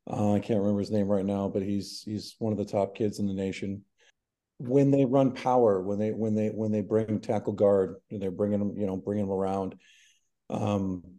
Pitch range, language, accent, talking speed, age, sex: 100-115 Hz, English, American, 225 wpm, 40-59, male